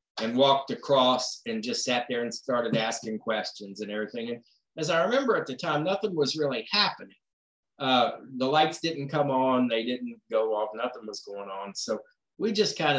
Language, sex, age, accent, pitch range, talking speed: English, male, 50-69, American, 110-145 Hz, 195 wpm